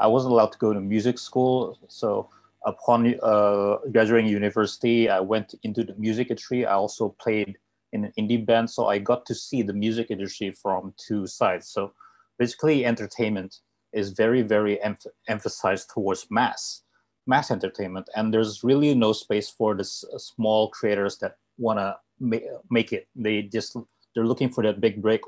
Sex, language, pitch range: male, English, 105-115 Hz